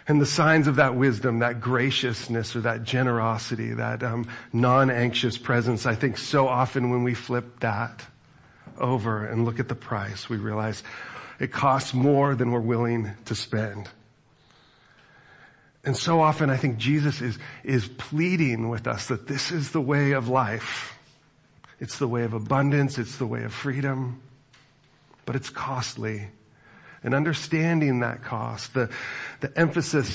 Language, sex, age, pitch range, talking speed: English, male, 40-59, 115-140 Hz, 155 wpm